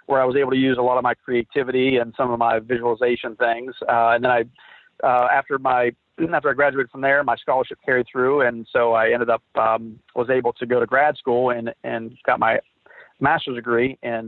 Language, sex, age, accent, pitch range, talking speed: English, male, 40-59, American, 115-130 Hz, 225 wpm